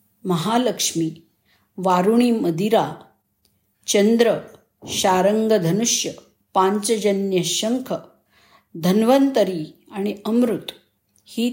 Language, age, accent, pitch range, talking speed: Marathi, 50-69, native, 180-230 Hz, 60 wpm